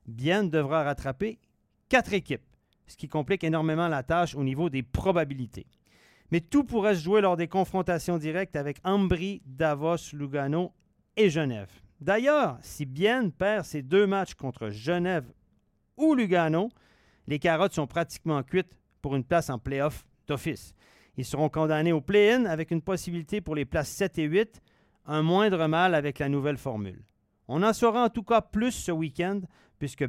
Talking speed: 165 wpm